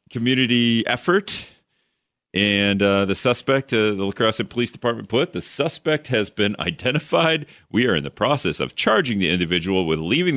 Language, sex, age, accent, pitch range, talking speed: English, male, 40-59, American, 90-120 Hz, 160 wpm